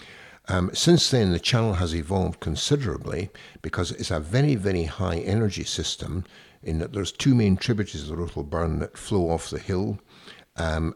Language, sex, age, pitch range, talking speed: English, male, 60-79, 80-105 Hz, 170 wpm